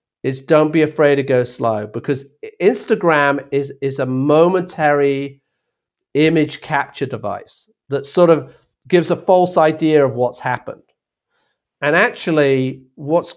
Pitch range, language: 130-155 Hz, English